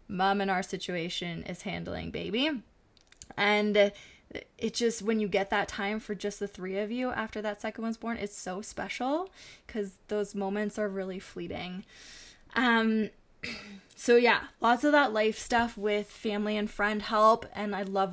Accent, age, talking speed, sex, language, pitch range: American, 20-39, 170 wpm, female, English, 195-230 Hz